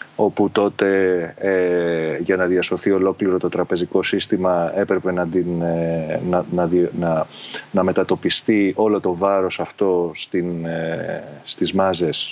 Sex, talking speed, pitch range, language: male, 95 wpm, 90-110 Hz, Greek